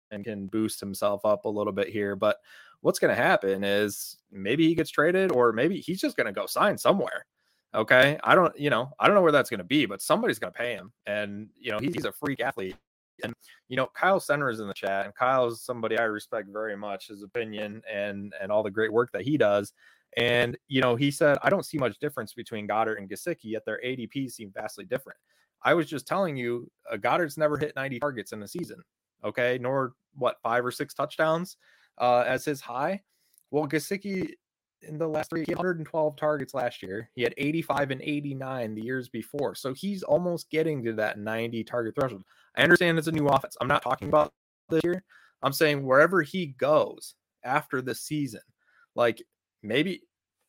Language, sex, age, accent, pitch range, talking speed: English, male, 20-39, American, 110-155 Hz, 215 wpm